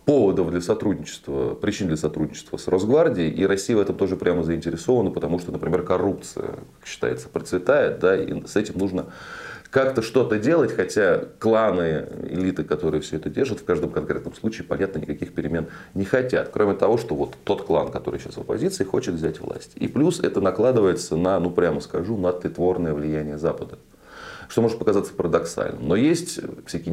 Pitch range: 85-130 Hz